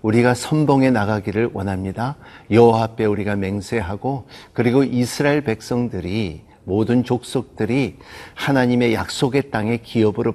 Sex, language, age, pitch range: male, Korean, 50-69, 110-145 Hz